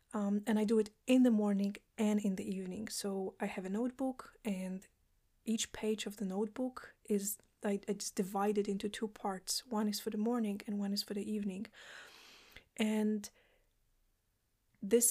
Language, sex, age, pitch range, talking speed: English, female, 20-39, 205-230 Hz, 170 wpm